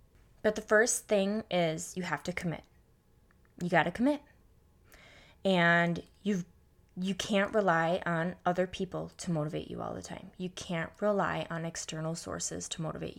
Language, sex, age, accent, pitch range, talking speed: English, female, 20-39, American, 165-200 Hz, 160 wpm